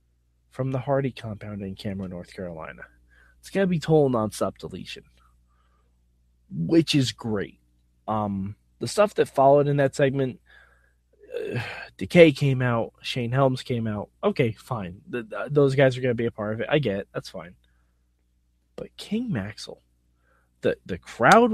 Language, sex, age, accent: English, male, 20-39, American